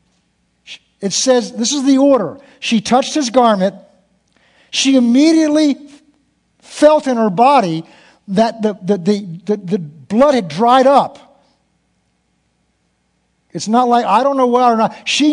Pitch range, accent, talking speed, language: 205-290 Hz, American, 140 wpm, English